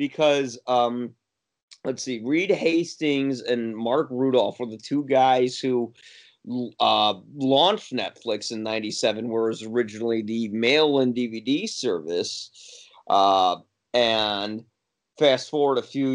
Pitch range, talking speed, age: 115-150 Hz, 120 wpm, 30-49